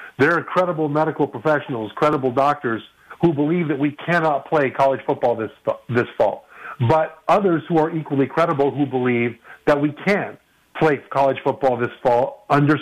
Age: 50-69